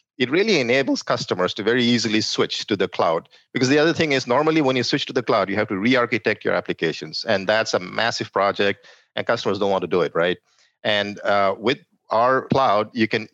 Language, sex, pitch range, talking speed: English, male, 105-130 Hz, 225 wpm